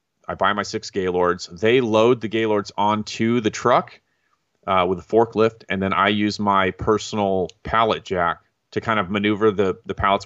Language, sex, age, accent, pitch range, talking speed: English, male, 30-49, American, 95-110 Hz, 180 wpm